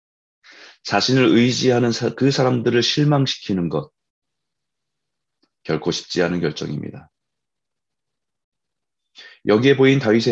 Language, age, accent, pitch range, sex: Korean, 30-49, native, 90-130 Hz, male